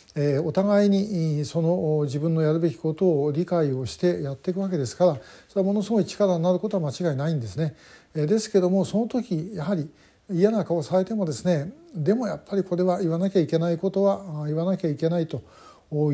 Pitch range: 145-180 Hz